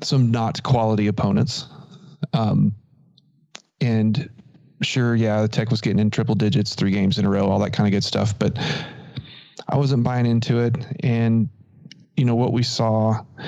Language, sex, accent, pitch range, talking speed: English, male, American, 110-140 Hz, 170 wpm